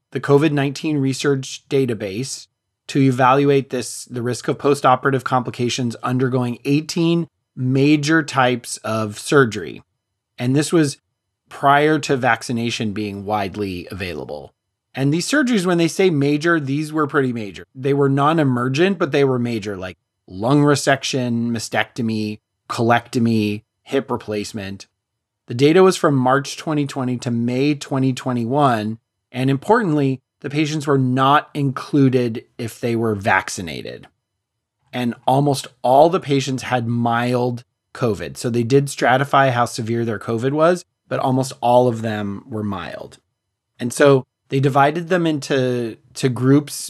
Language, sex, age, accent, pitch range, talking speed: English, male, 30-49, American, 115-140 Hz, 135 wpm